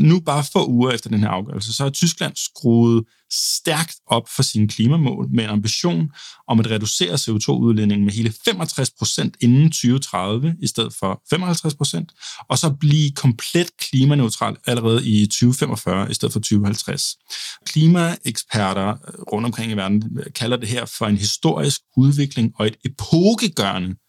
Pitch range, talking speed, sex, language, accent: 105-145 Hz, 155 wpm, male, Danish, native